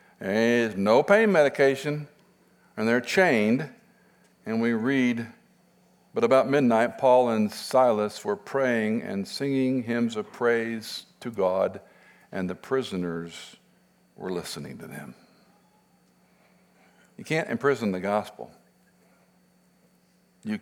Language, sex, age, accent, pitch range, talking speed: English, male, 50-69, American, 95-120 Hz, 110 wpm